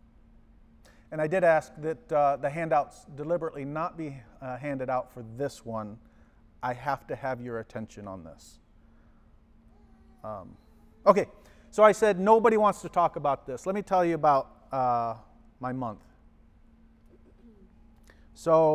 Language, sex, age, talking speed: English, male, 40-59, 145 wpm